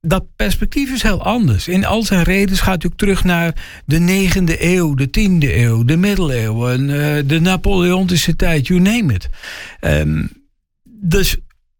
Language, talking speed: Dutch, 155 wpm